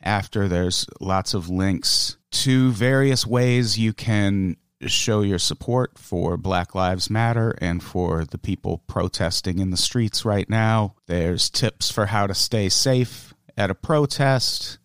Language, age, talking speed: English, 40-59, 150 wpm